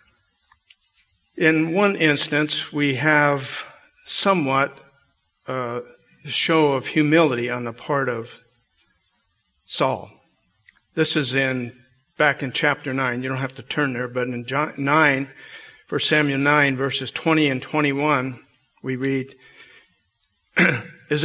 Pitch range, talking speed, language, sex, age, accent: 130-160 Hz, 120 wpm, English, male, 50-69, American